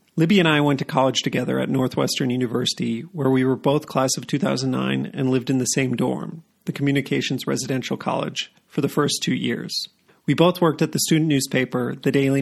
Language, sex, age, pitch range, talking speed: English, male, 40-59, 125-155 Hz, 200 wpm